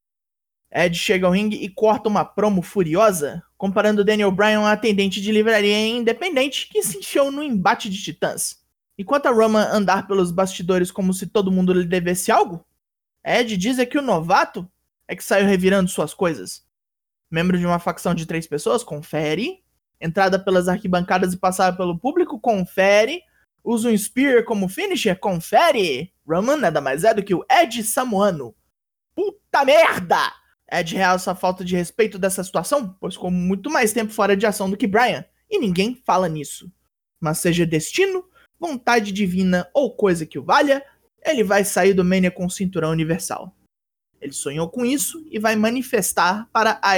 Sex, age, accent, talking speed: male, 20-39, Brazilian, 170 wpm